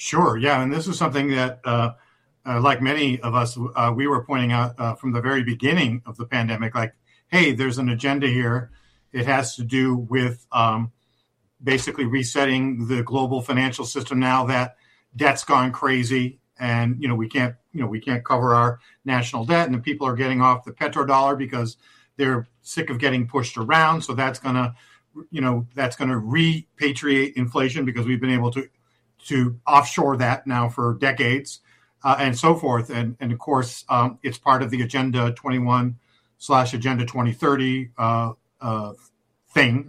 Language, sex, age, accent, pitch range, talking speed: English, male, 50-69, American, 120-140 Hz, 180 wpm